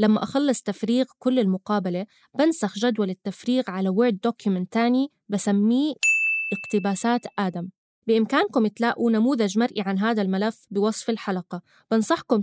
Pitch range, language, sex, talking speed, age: 200-250 Hz, Arabic, female, 120 wpm, 20-39